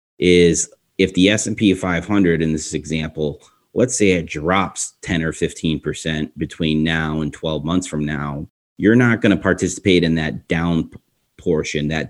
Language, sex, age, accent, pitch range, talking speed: English, male, 30-49, American, 80-90 Hz, 160 wpm